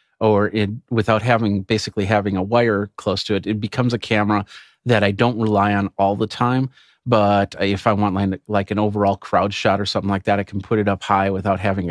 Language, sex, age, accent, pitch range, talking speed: English, male, 40-59, American, 100-115 Hz, 220 wpm